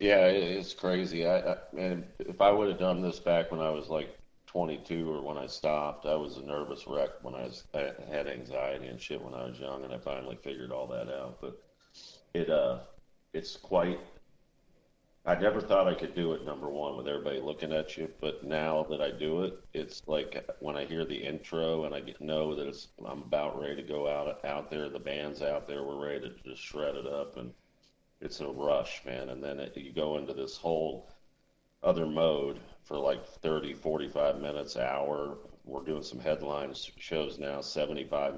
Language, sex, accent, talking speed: English, male, American, 200 wpm